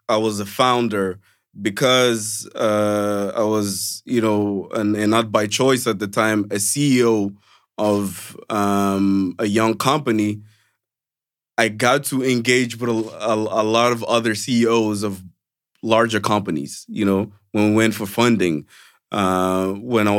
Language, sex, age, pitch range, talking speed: Portuguese, male, 20-39, 105-120 Hz, 145 wpm